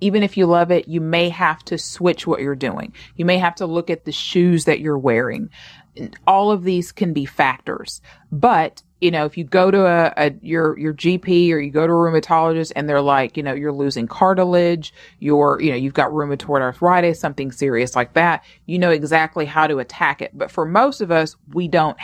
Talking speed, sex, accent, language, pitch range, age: 220 wpm, female, American, English, 150-180 Hz, 30-49